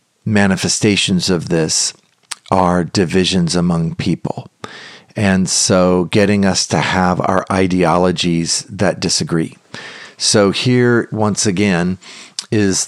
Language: English